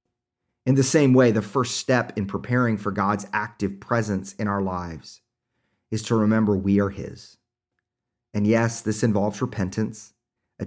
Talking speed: 155 wpm